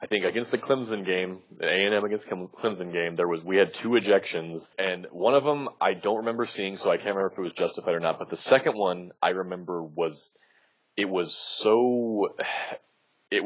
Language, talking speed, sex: English, 205 wpm, male